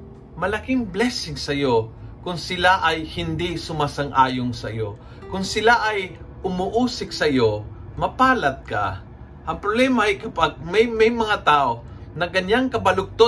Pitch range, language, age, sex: 120-190 Hz, Filipino, 50-69, male